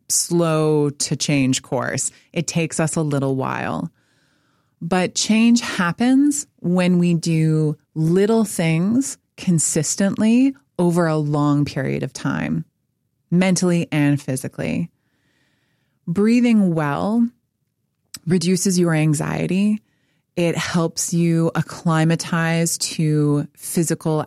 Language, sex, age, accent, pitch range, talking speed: English, female, 20-39, American, 145-180 Hz, 95 wpm